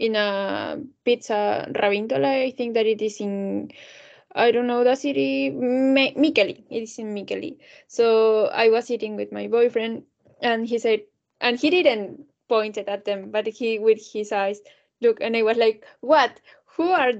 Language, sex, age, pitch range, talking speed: Finnish, female, 10-29, 225-285 Hz, 175 wpm